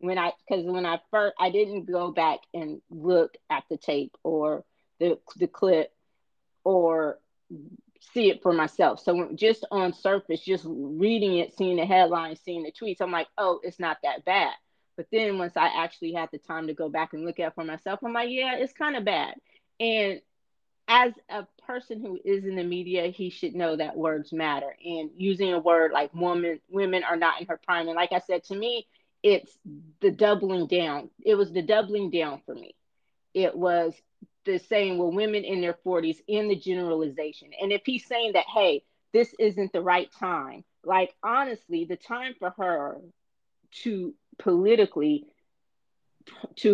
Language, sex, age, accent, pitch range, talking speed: English, female, 30-49, American, 165-210 Hz, 185 wpm